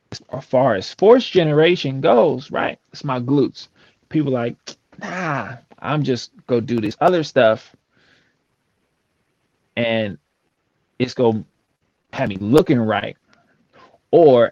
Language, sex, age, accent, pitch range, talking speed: English, male, 20-39, American, 115-150 Hz, 130 wpm